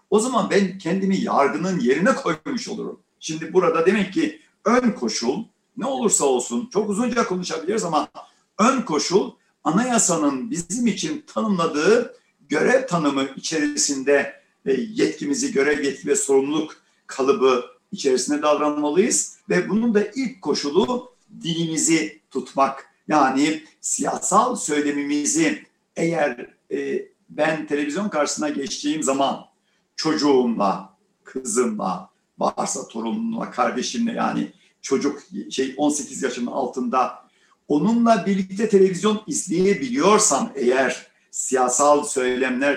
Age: 60-79